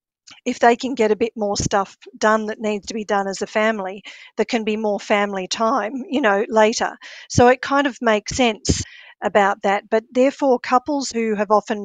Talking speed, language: 205 wpm, English